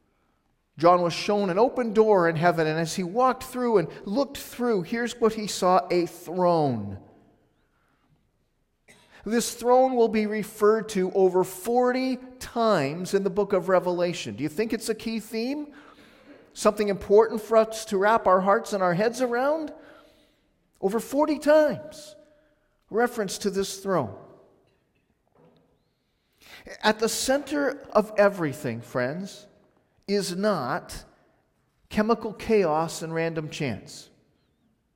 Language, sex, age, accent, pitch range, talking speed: English, male, 40-59, American, 185-235 Hz, 130 wpm